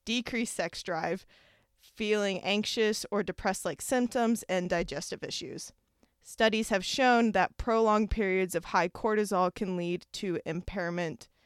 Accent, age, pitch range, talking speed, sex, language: American, 20-39, 180-220 Hz, 125 wpm, female, English